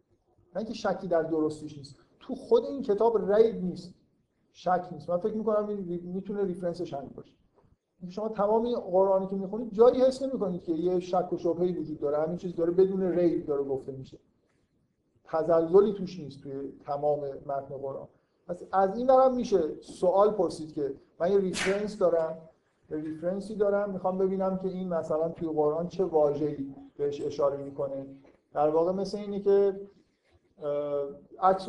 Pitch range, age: 155-195 Hz, 50-69